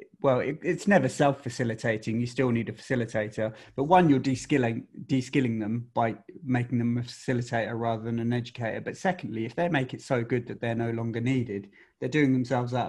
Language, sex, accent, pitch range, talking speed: English, male, British, 115-130 Hz, 195 wpm